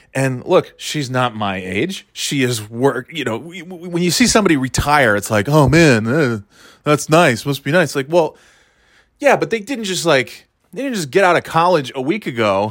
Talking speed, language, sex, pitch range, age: 210 wpm, English, male, 110-160 Hz, 20-39